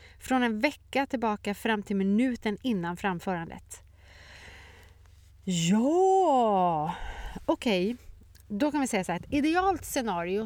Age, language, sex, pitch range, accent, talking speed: 30-49, Swedish, female, 165-215 Hz, native, 120 wpm